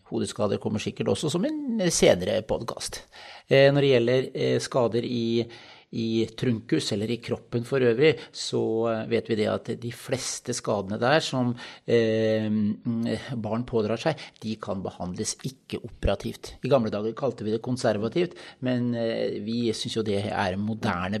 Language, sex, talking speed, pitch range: English, male, 150 wpm, 110-125 Hz